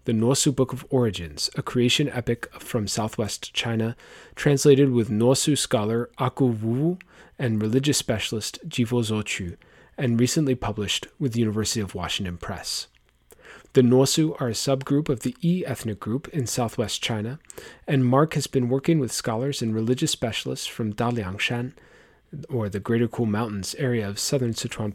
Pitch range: 110-135 Hz